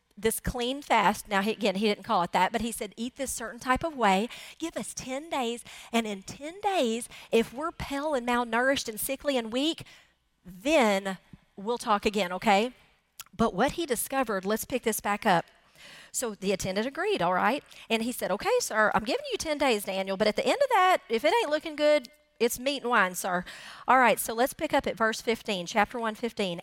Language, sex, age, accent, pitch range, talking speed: English, female, 40-59, American, 195-255 Hz, 210 wpm